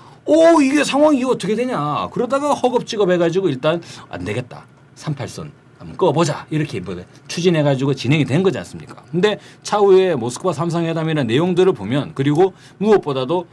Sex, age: male, 40-59